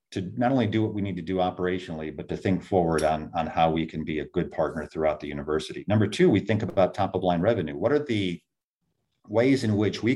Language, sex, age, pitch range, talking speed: English, male, 50-69, 90-110 Hz, 250 wpm